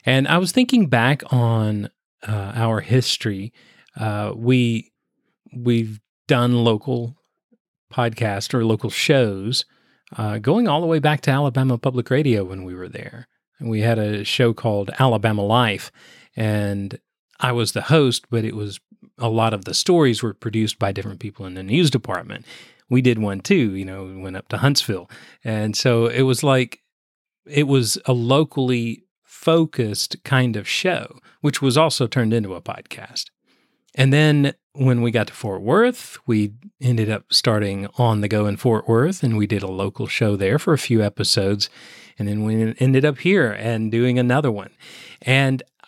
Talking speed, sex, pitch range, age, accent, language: 175 wpm, male, 105-135 Hz, 40-59, American, English